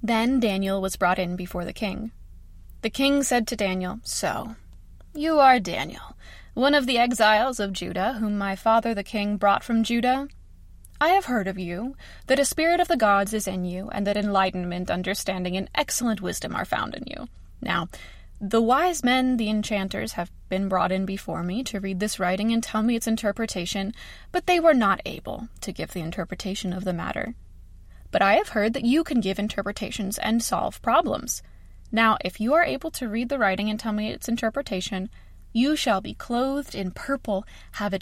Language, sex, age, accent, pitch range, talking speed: English, female, 20-39, American, 190-245 Hz, 195 wpm